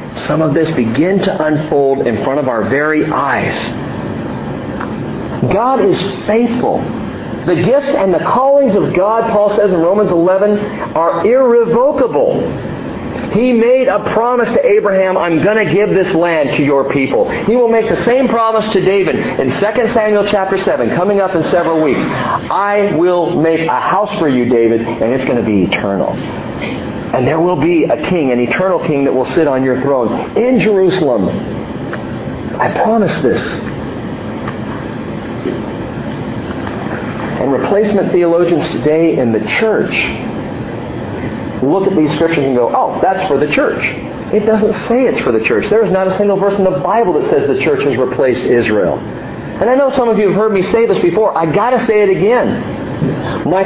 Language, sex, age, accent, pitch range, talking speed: English, male, 40-59, American, 160-220 Hz, 175 wpm